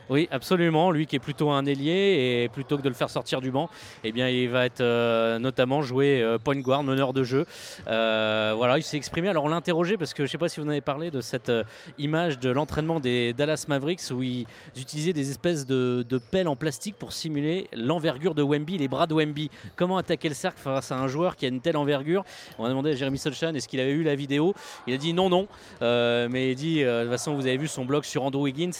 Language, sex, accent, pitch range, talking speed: French, male, French, 125-160 Hz, 265 wpm